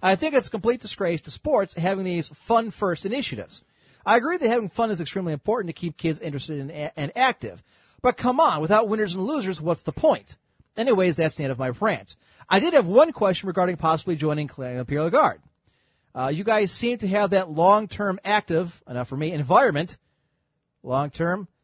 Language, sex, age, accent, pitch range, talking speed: English, male, 40-59, American, 140-195 Hz, 195 wpm